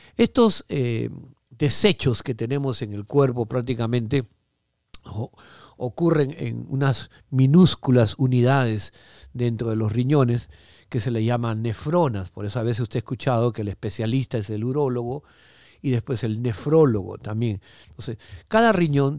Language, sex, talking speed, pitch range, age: Spanish, male, 140 wpm, 115-140 Hz, 50-69